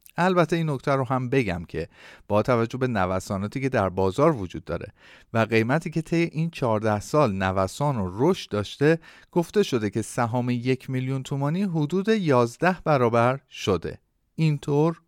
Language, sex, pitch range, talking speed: Persian, male, 100-150 Hz, 155 wpm